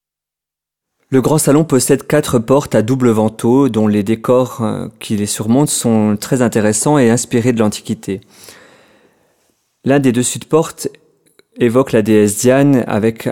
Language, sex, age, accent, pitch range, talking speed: French, male, 30-49, French, 105-130 Hz, 145 wpm